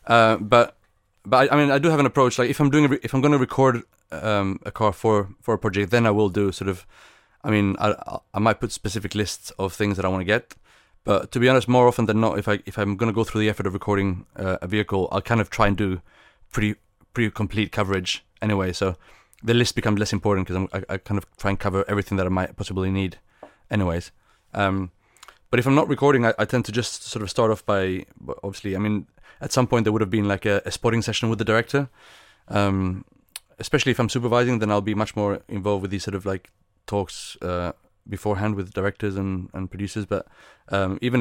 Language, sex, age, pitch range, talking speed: Turkish, male, 30-49, 95-110 Hz, 240 wpm